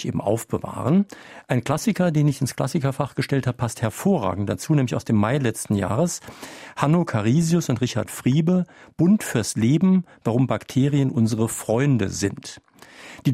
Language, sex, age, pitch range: German, male, 50-69, 105-145 Hz